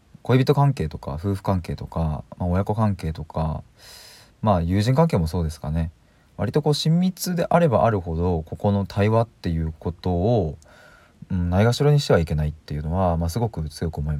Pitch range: 80-110 Hz